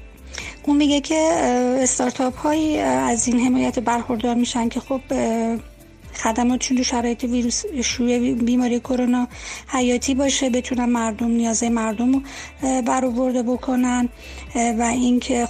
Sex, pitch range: female, 230-255 Hz